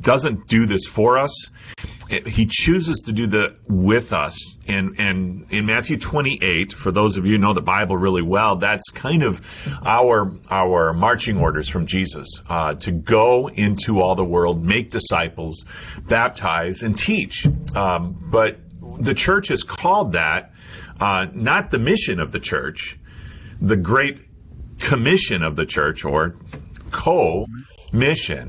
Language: English